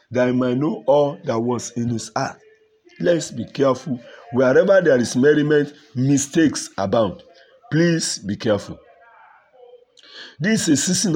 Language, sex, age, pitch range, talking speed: English, male, 50-69, 120-160 Hz, 140 wpm